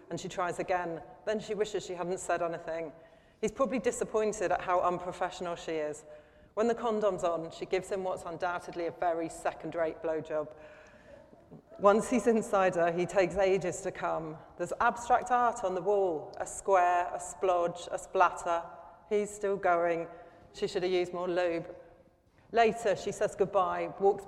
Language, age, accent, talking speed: English, 30-49, British, 165 wpm